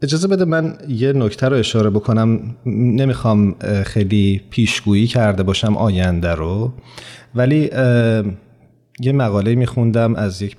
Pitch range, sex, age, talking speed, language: 100-120 Hz, male, 40-59, 120 wpm, Persian